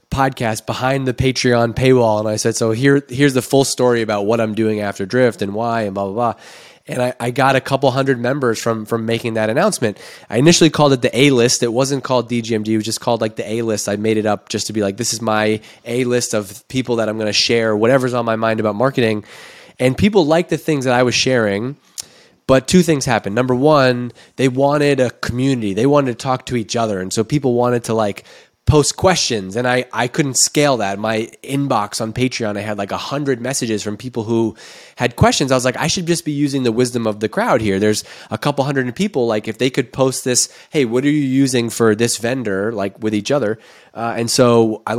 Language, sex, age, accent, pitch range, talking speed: English, male, 20-39, American, 110-135 Hz, 240 wpm